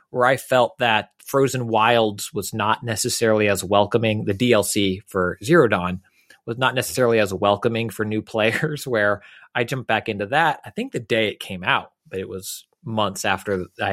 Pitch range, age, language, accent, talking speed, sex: 105-130 Hz, 30-49, English, American, 185 wpm, male